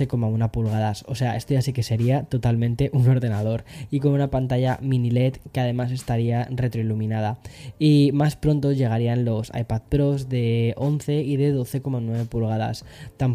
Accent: Spanish